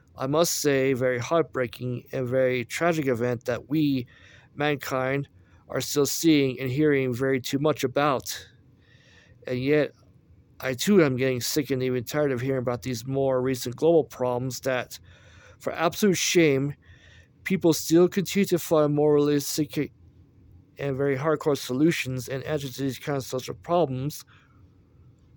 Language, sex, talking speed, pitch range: English, male, 145 wpm, 120-145 Hz